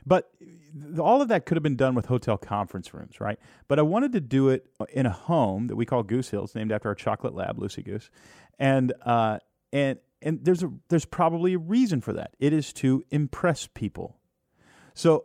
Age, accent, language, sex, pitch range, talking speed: 30-49, American, English, male, 100-135 Hz, 205 wpm